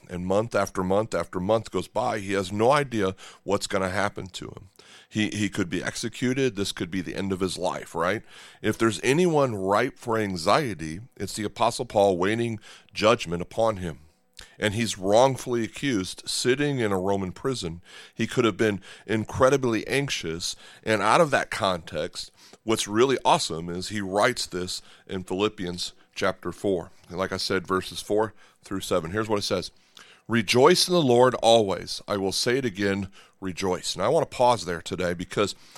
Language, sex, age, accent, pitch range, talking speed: English, male, 40-59, American, 95-115 Hz, 180 wpm